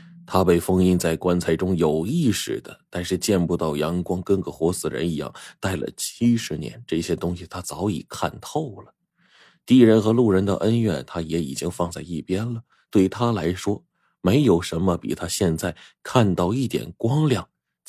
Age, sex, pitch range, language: 20-39, male, 80-120 Hz, Chinese